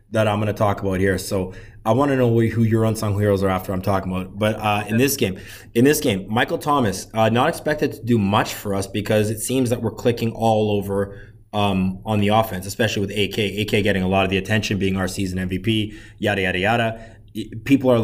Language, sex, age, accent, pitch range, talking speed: English, male, 20-39, American, 100-120 Hz, 225 wpm